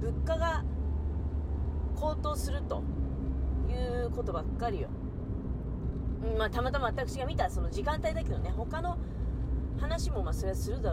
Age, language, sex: 40-59, Japanese, female